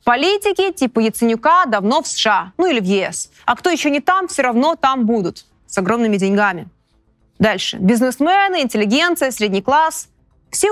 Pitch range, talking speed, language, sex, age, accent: 205-330 Hz, 155 wpm, Russian, female, 20-39, native